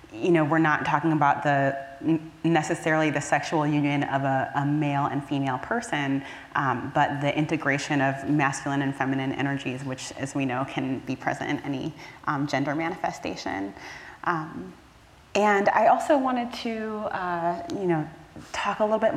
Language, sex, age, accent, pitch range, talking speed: English, female, 30-49, American, 145-185 Hz, 165 wpm